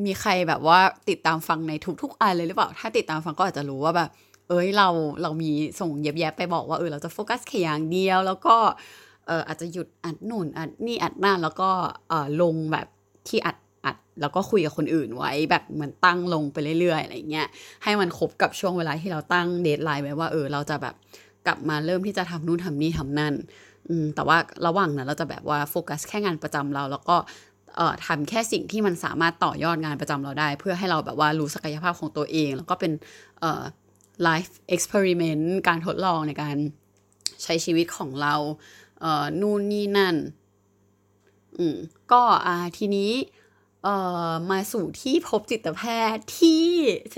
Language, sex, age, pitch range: Thai, female, 20-39, 150-190 Hz